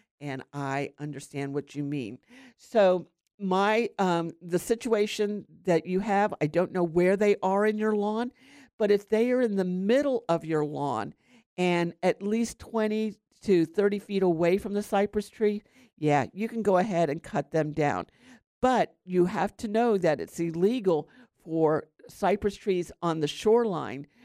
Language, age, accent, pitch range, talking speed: English, 50-69, American, 155-210 Hz, 170 wpm